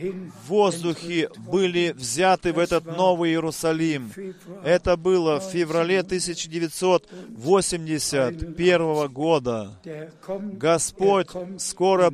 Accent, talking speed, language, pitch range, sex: native, 80 wpm, Russian, 170-200 Hz, male